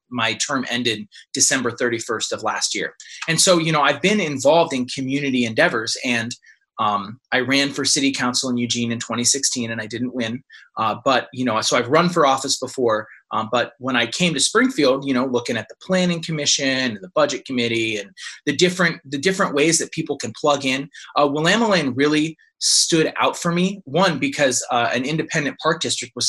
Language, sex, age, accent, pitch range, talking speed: English, male, 20-39, American, 125-155 Hz, 200 wpm